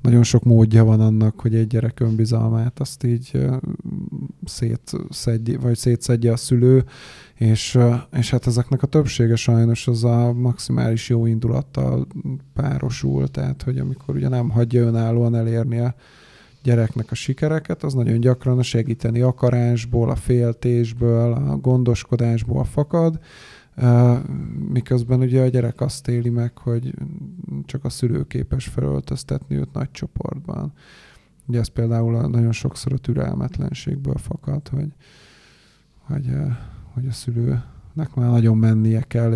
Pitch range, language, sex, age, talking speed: 115-125 Hz, Hungarian, male, 20-39, 125 wpm